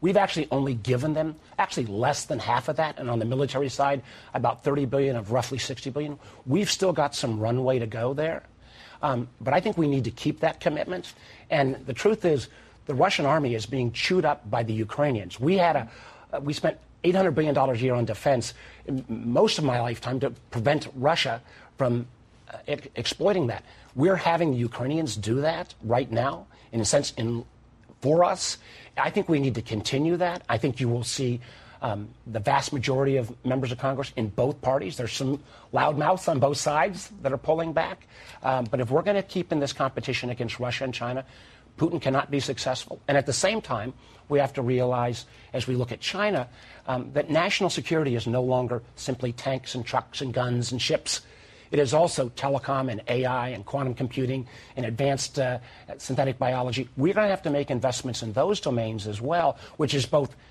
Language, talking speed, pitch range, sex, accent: English, 200 wpm, 120-145 Hz, male, American